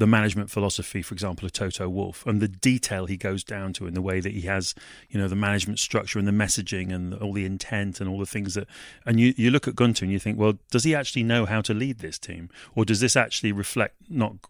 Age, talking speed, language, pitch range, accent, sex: 30-49, 260 wpm, English, 100-120 Hz, British, male